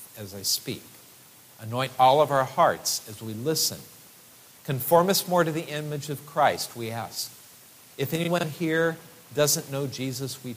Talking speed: 160 wpm